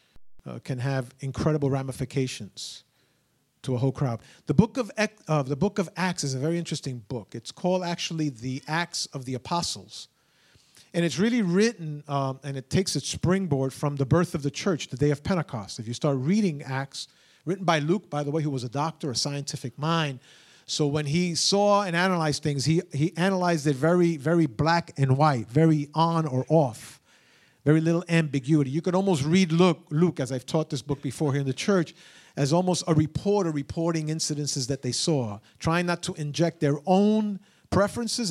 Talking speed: 195 wpm